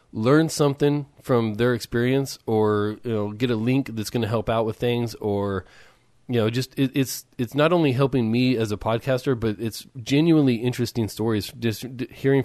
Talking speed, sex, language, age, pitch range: 185 wpm, male, English, 20-39, 100-125 Hz